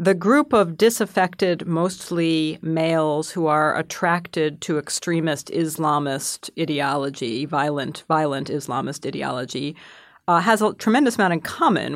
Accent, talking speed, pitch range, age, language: American, 120 wpm, 150-180 Hz, 40-59, English